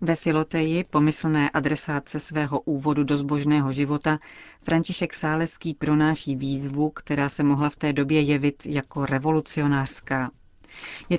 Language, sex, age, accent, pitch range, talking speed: Czech, female, 40-59, native, 145-160 Hz, 125 wpm